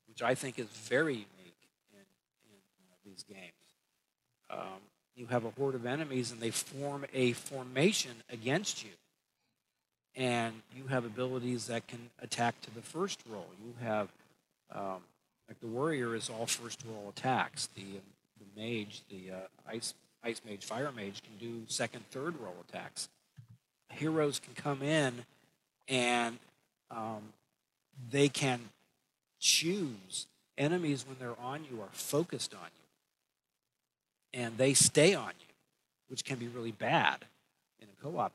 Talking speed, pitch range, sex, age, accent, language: 150 wpm, 105-130 Hz, male, 50-69, American, English